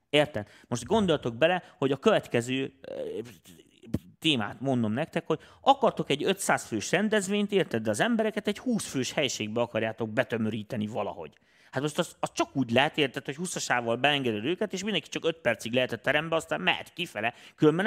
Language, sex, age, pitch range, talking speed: Hungarian, male, 30-49, 115-170 Hz, 170 wpm